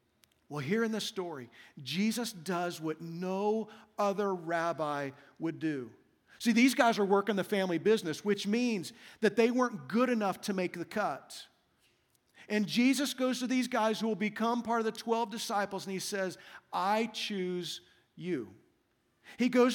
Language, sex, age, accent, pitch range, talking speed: English, male, 40-59, American, 165-225 Hz, 165 wpm